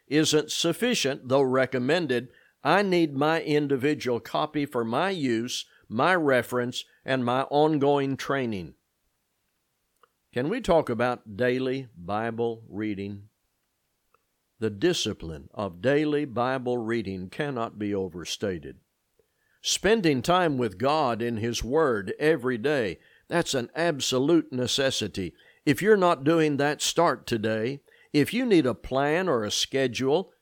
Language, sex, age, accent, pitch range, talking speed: English, male, 60-79, American, 115-150 Hz, 120 wpm